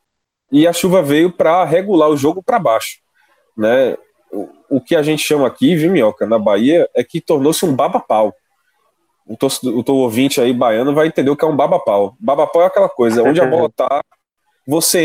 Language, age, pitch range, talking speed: Portuguese, 20-39, 135-205 Hz, 195 wpm